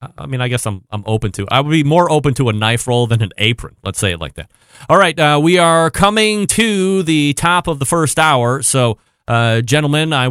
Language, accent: English, American